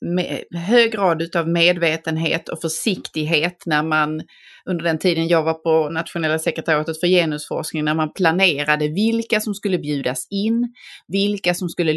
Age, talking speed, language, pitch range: 30-49, 150 wpm, Swedish, 155-180 Hz